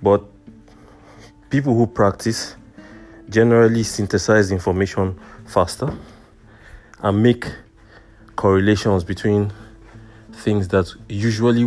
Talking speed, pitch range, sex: 75 wpm, 100-115 Hz, male